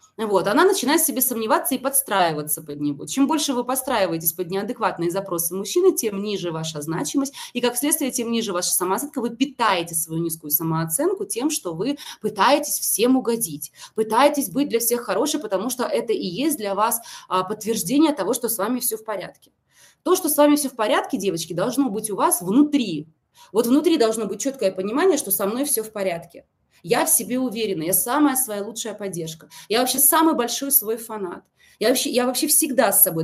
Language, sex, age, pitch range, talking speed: Russian, female, 20-39, 190-275 Hz, 190 wpm